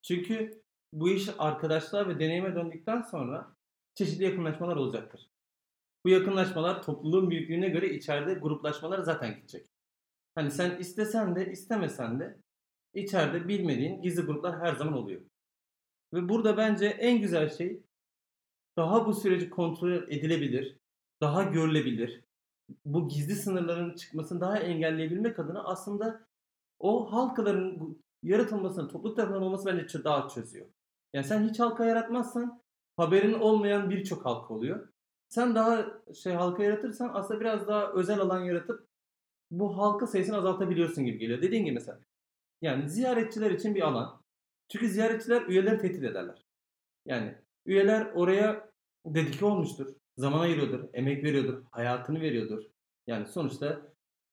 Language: Turkish